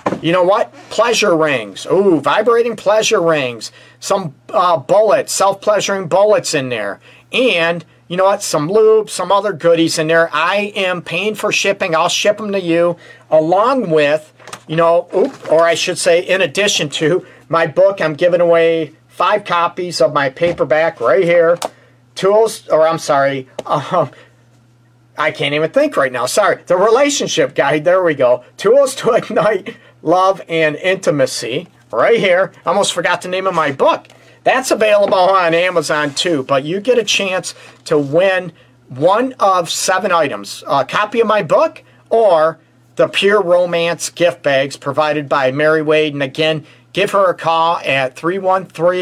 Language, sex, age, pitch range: English, male, 40-59, 150-195 Hz